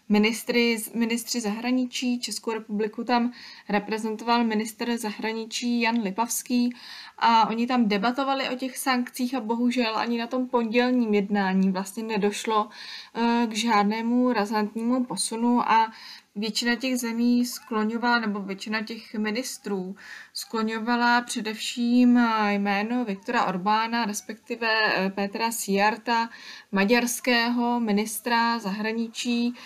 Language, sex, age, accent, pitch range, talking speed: Czech, female, 20-39, native, 210-240 Hz, 105 wpm